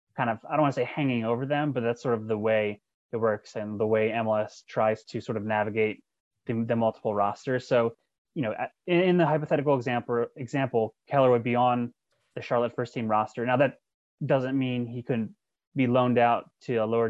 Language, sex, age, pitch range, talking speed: English, male, 20-39, 110-130 Hz, 215 wpm